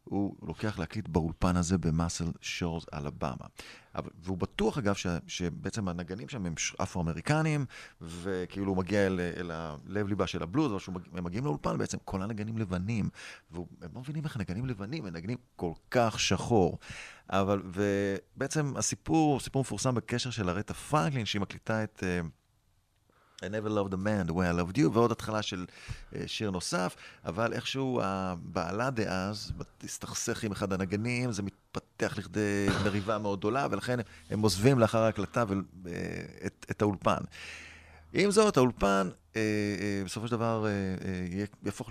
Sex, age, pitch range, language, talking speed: male, 30-49, 95-115 Hz, Hebrew, 145 wpm